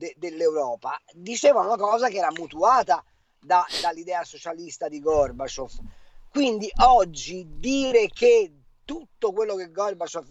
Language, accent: Italian, native